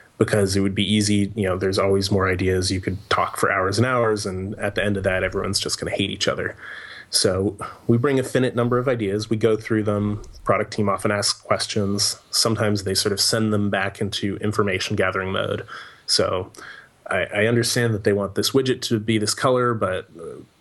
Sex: male